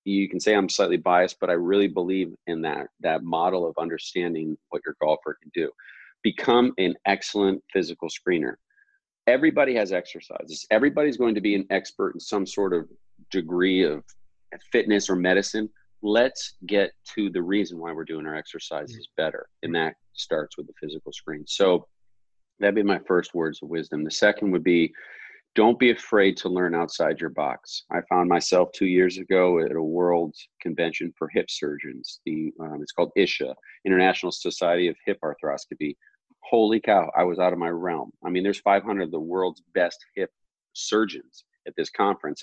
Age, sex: 40-59, male